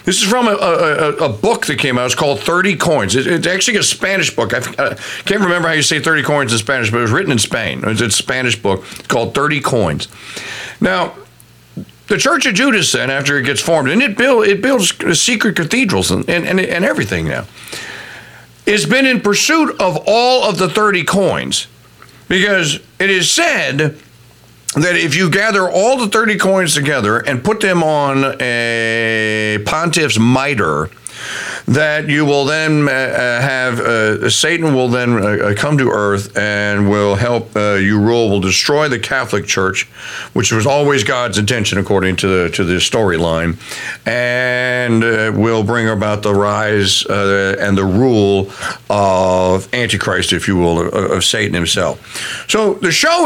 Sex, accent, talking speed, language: male, American, 175 wpm, English